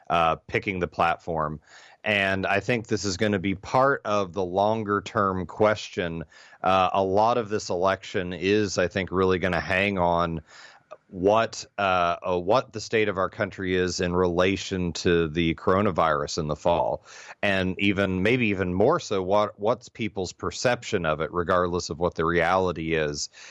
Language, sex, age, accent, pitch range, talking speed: English, male, 30-49, American, 85-100 Hz, 180 wpm